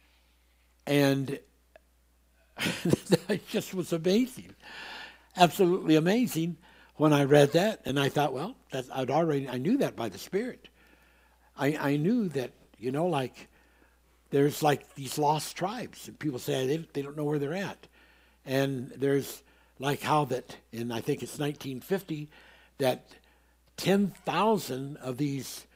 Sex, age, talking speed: male, 60-79, 140 wpm